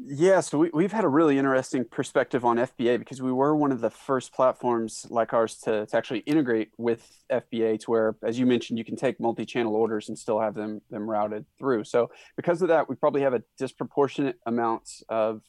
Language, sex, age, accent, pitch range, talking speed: English, male, 20-39, American, 115-135 Hz, 215 wpm